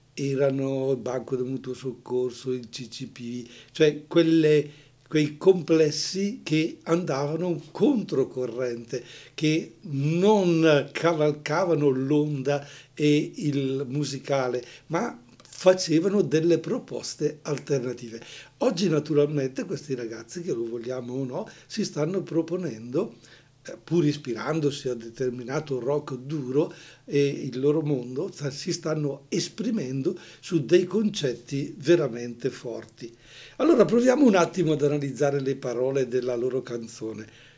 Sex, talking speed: male, 105 wpm